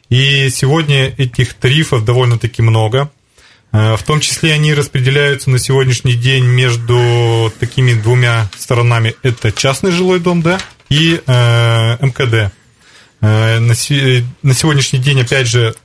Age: 20-39